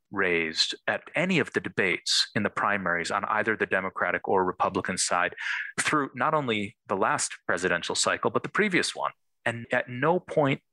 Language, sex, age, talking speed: English, male, 30-49, 175 wpm